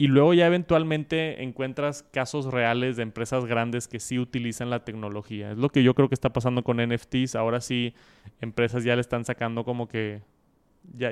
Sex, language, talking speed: male, Spanish, 190 wpm